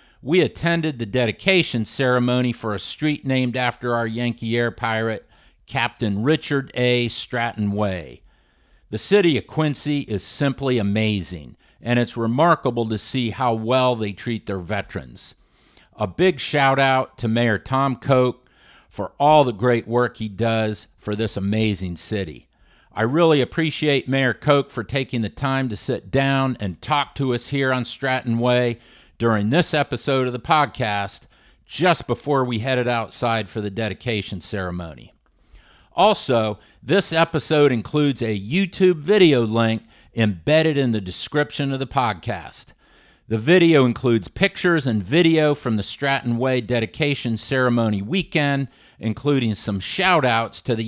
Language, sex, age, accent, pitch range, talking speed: English, male, 50-69, American, 110-140 Hz, 145 wpm